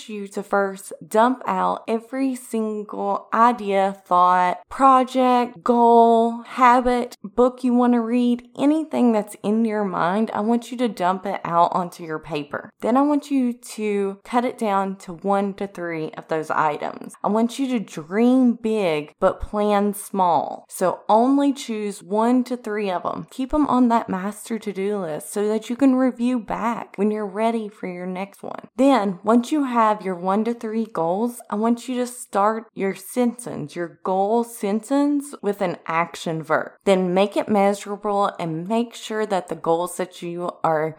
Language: English